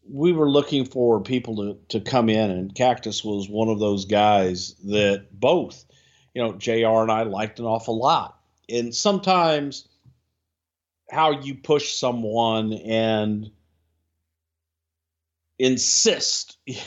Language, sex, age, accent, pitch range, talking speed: English, male, 50-69, American, 100-125 Hz, 125 wpm